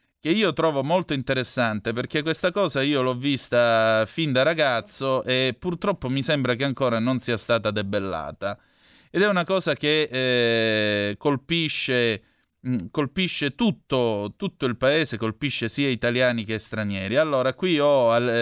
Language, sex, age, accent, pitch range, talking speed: Italian, male, 30-49, native, 110-140 Hz, 145 wpm